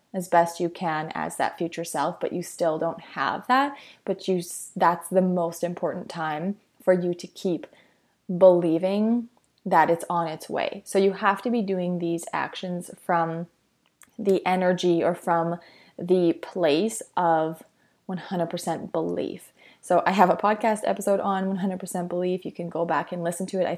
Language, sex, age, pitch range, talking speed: English, female, 20-39, 170-190 Hz, 170 wpm